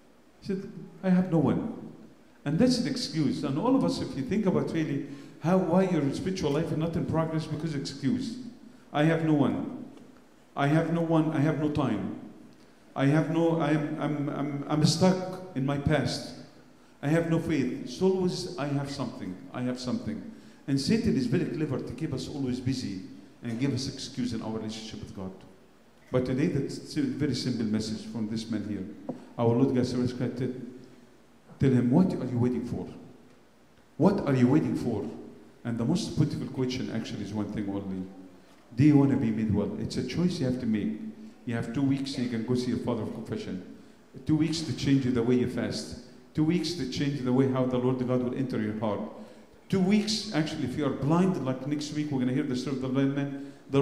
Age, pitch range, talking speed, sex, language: 50-69, 125-160 Hz, 215 wpm, male, English